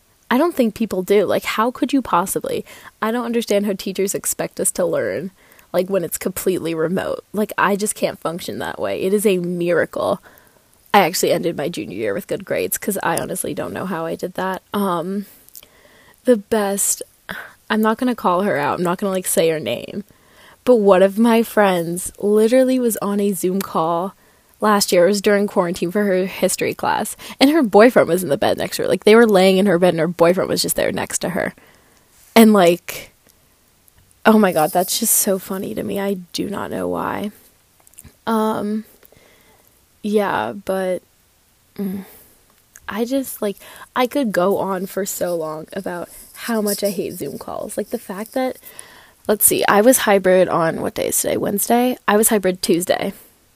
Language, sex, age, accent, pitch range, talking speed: English, female, 20-39, American, 185-225 Hz, 195 wpm